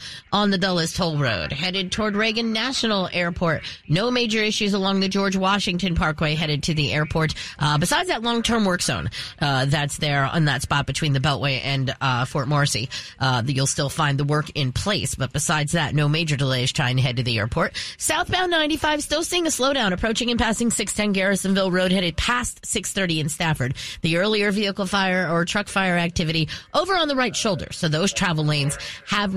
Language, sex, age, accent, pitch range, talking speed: English, female, 30-49, American, 150-215 Hz, 195 wpm